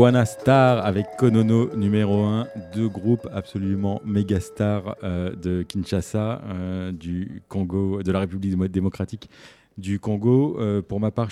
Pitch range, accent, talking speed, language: 90-105 Hz, French, 145 wpm, French